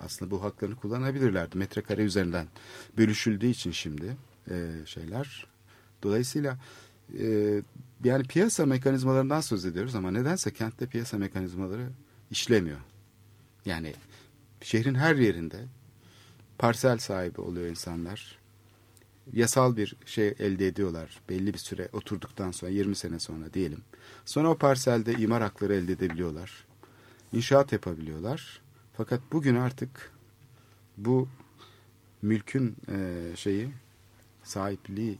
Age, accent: 50-69, native